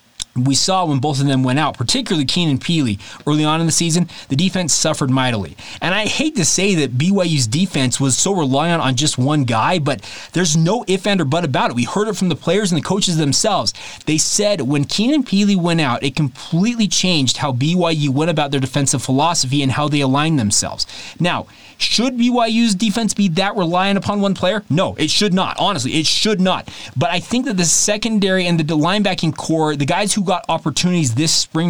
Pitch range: 140-185 Hz